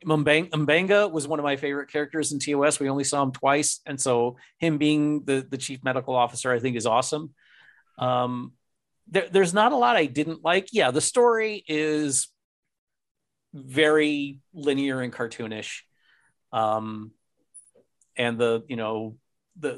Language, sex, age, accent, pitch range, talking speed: English, male, 40-59, American, 125-170 Hz, 150 wpm